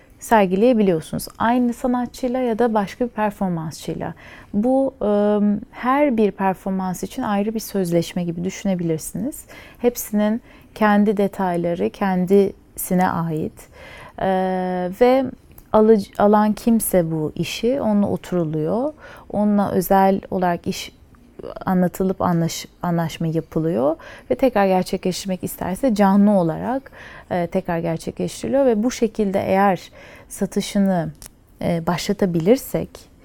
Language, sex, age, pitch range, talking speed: Turkish, female, 30-49, 175-220 Hz, 105 wpm